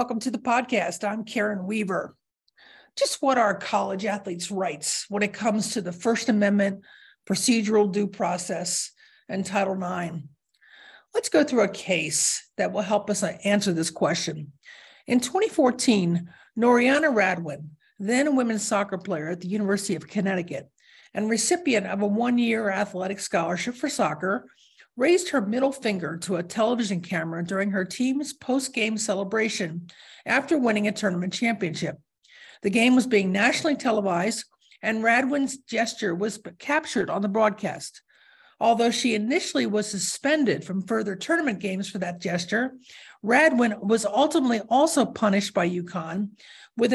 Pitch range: 190-245 Hz